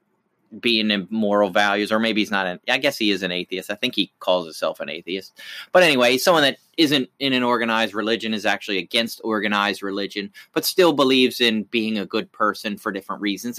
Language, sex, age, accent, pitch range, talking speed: English, male, 30-49, American, 95-115 Hz, 210 wpm